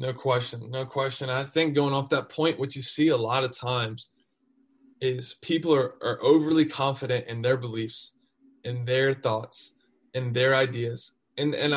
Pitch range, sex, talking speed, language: 120-140 Hz, male, 175 wpm, English